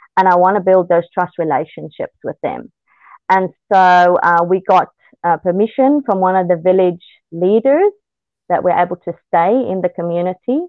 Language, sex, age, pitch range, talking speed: English, female, 20-39, 180-225 Hz, 170 wpm